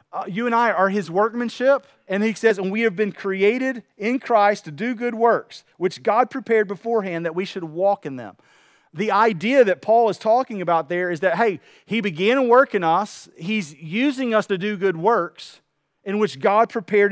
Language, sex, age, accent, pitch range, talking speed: English, male, 40-59, American, 160-220 Hz, 205 wpm